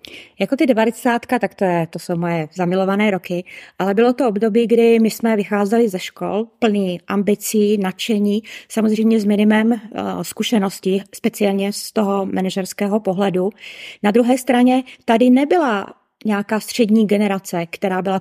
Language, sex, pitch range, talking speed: Czech, female, 210-270 Hz, 140 wpm